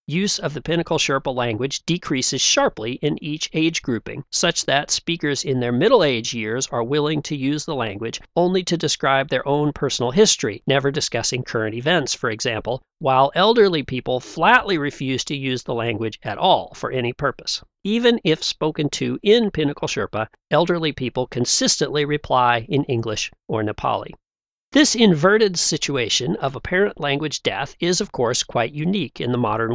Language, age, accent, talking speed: English, 40-59, American, 165 wpm